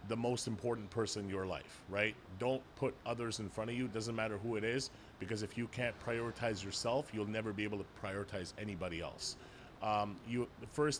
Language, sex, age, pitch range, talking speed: English, male, 30-49, 105-125 Hz, 215 wpm